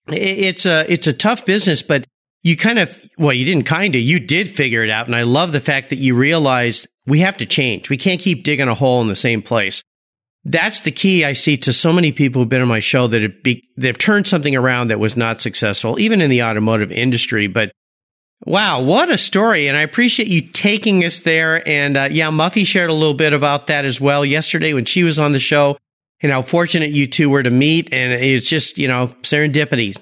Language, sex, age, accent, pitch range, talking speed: English, male, 50-69, American, 120-160 Hz, 235 wpm